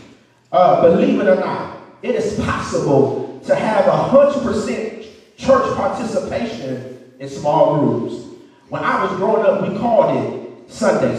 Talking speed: 140 wpm